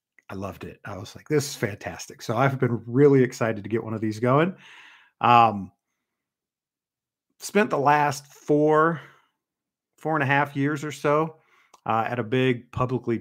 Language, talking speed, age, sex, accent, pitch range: English, 170 wpm, 40-59, male, American, 100-125 Hz